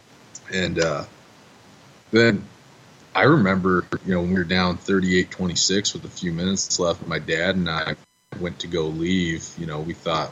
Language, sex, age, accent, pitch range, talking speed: English, male, 20-39, American, 85-95 Hz, 170 wpm